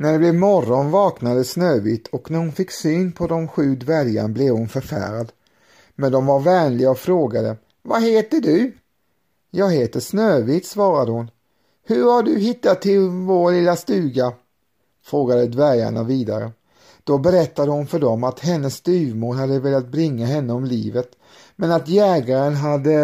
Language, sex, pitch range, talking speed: Swedish, male, 125-180 Hz, 160 wpm